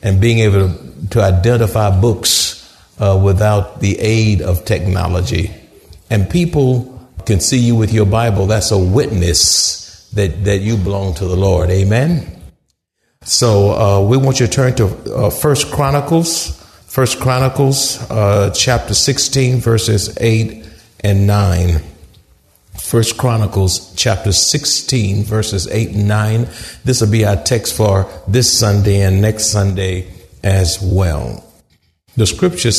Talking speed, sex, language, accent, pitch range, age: 135 wpm, male, English, American, 95-130 Hz, 50-69